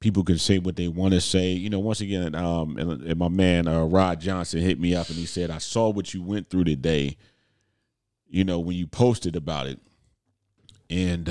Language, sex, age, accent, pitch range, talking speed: English, male, 40-59, American, 85-105 Hz, 220 wpm